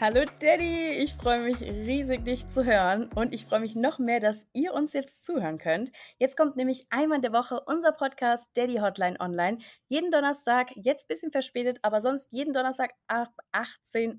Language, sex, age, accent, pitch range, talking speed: German, female, 20-39, German, 215-265 Hz, 190 wpm